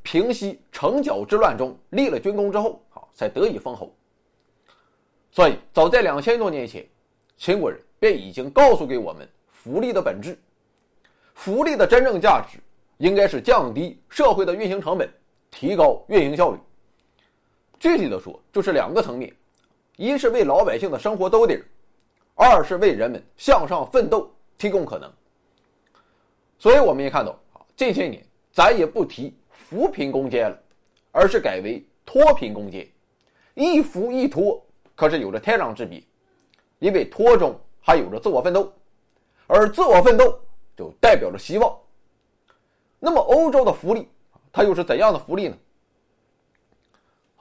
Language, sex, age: Chinese, male, 30-49